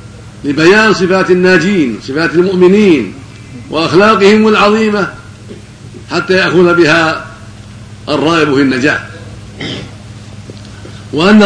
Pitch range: 110-185 Hz